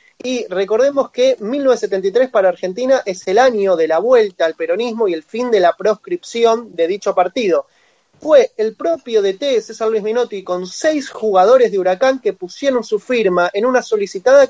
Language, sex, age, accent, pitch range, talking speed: Spanish, male, 20-39, Argentinian, 200-265 Hz, 175 wpm